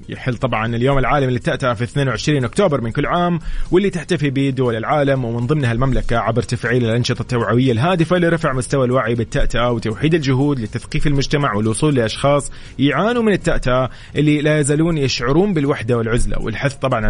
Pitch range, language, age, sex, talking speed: 120-150 Hz, English, 30-49, male, 155 wpm